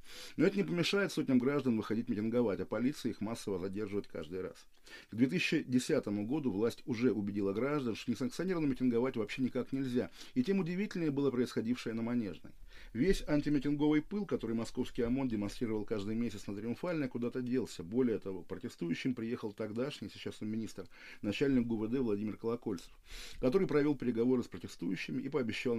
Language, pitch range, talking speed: Russian, 105-135 Hz, 155 wpm